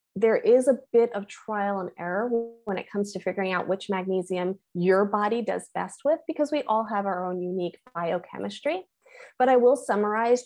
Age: 20-39